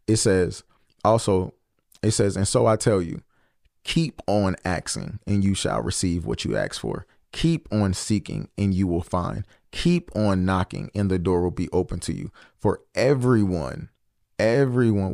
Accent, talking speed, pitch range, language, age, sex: American, 165 wpm, 95-115 Hz, English, 30-49, male